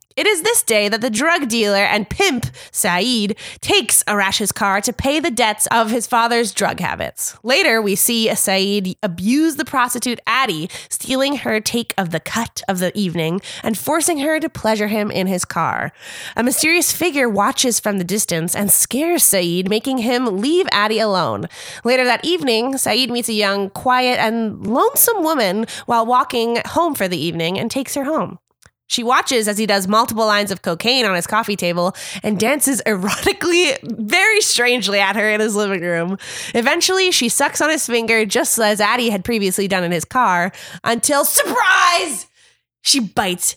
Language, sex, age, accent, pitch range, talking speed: English, female, 20-39, American, 205-275 Hz, 175 wpm